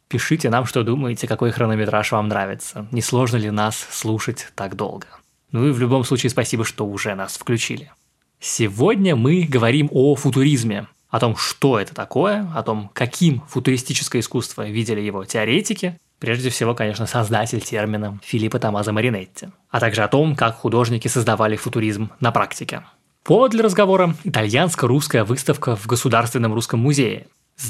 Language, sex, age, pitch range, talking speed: Russian, male, 20-39, 110-135 Hz, 155 wpm